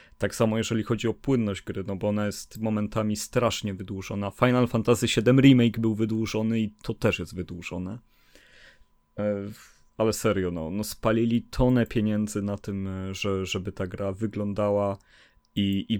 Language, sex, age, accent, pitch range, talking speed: Polish, male, 30-49, native, 100-125 Hz, 150 wpm